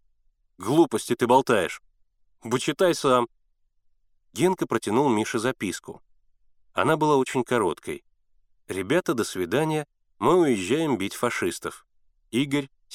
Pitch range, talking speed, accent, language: 110-145 Hz, 95 wpm, native, Russian